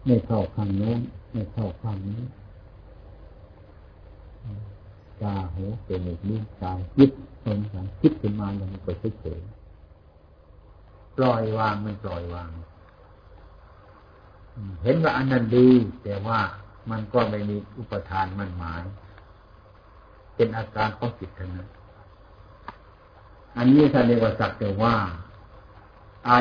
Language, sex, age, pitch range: Thai, male, 60-79, 90-110 Hz